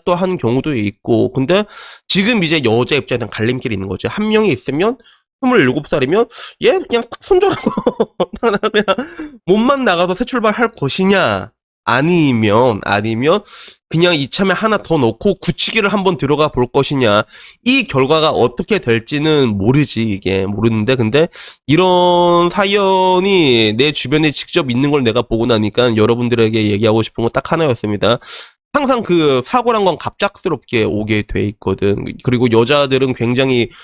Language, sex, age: Korean, male, 20-39